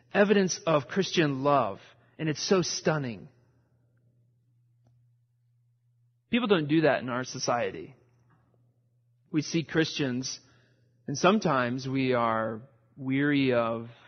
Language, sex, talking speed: English, male, 100 wpm